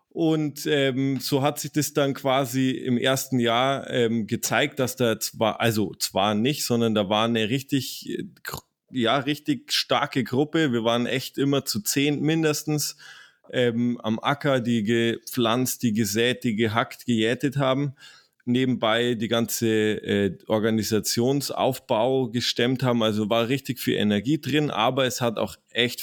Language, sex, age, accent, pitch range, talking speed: German, male, 20-39, German, 110-130 Hz, 150 wpm